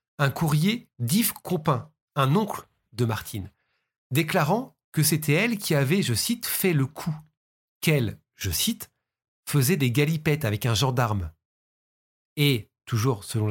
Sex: male